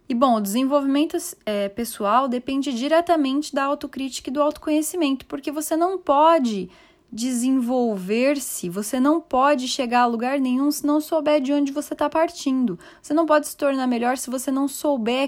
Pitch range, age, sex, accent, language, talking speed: 225-290 Hz, 10-29, female, Brazilian, Portuguese, 165 wpm